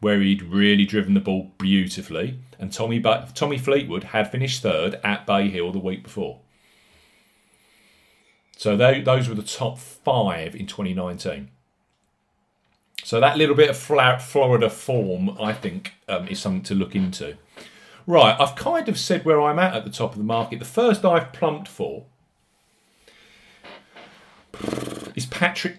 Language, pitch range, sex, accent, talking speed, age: English, 100-150 Hz, male, British, 150 wpm, 40-59